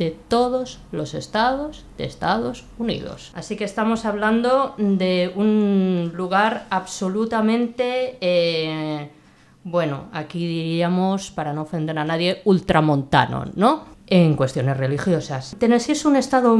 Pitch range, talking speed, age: 160-220 Hz, 120 wpm, 20-39